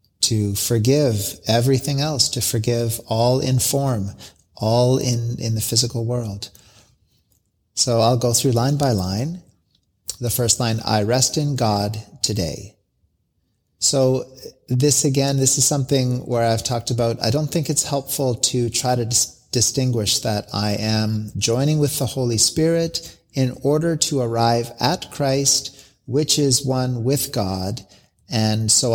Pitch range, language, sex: 105-130 Hz, English, male